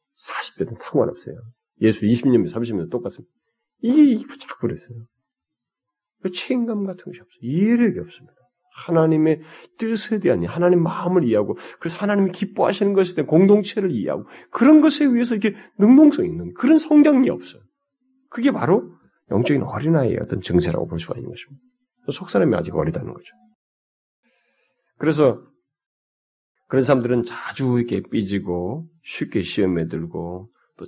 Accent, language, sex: native, Korean, male